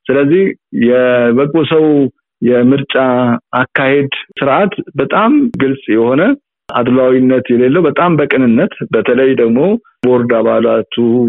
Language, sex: Amharic, male